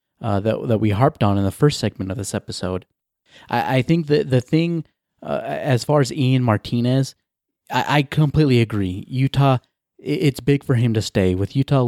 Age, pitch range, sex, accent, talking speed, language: 30-49, 100-125 Hz, male, American, 195 wpm, English